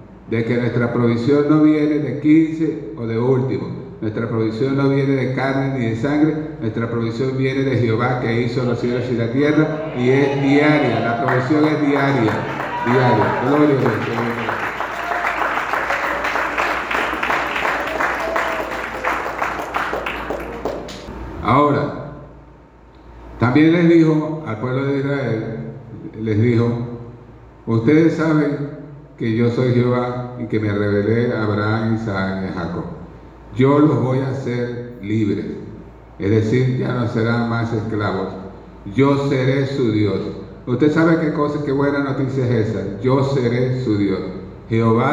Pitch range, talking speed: 115-140 Hz, 135 wpm